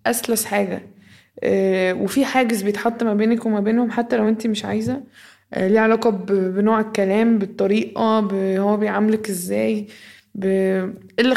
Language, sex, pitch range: Arabic, female, 195-235 Hz